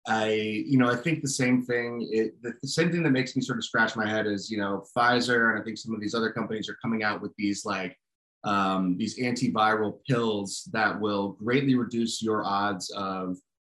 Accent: American